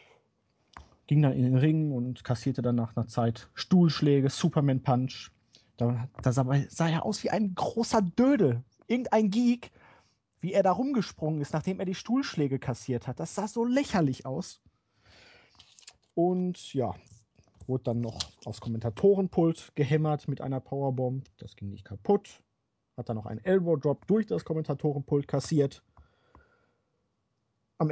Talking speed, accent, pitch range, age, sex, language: 140 wpm, German, 130-195 Hz, 30-49, male, German